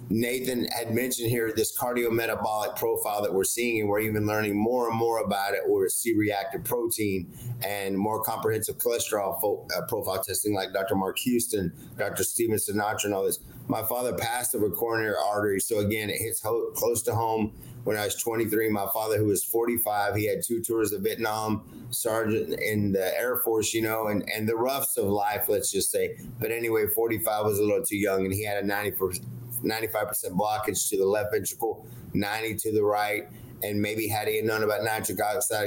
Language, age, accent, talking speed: English, 30-49, American, 200 wpm